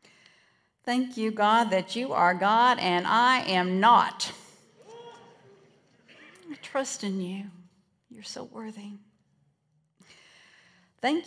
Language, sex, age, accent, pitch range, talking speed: English, female, 50-69, American, 185-260 Hz, 100 wpm